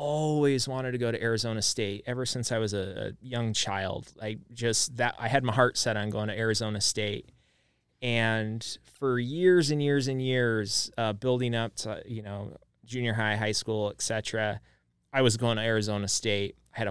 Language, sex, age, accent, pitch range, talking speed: English, male, 20-39, American, 100-120 Hz, 190 wpm